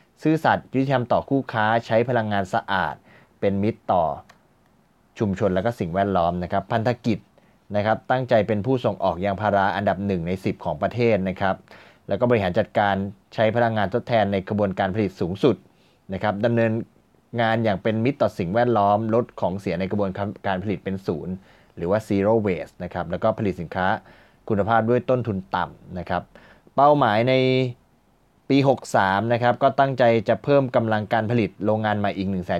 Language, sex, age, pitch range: Thai, male, 20-39, 95-115 Hz